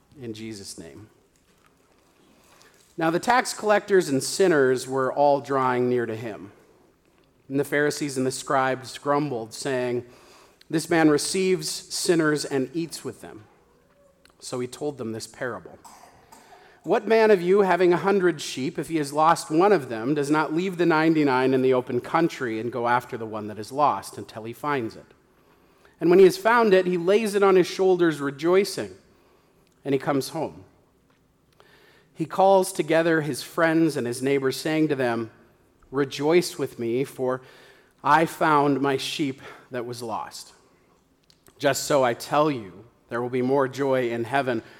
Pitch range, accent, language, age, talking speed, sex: 130-170 Hz, American, English, 40-59, 165 wpm, male